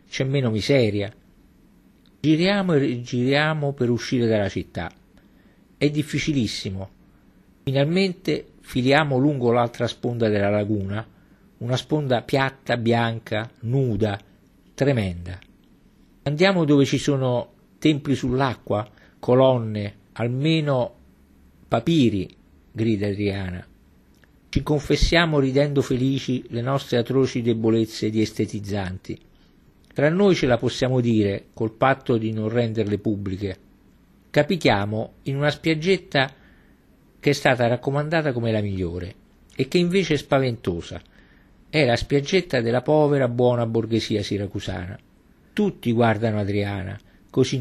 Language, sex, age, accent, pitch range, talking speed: Italian, male, 50-69, native, 105-140 Hz, 110 wpm